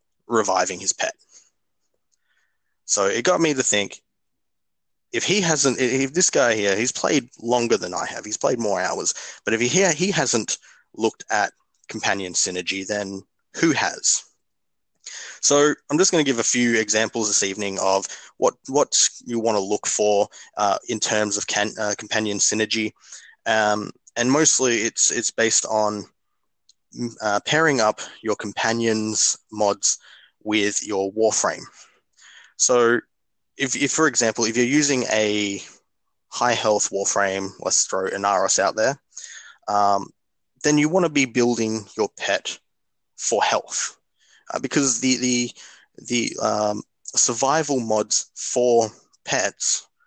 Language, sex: English, male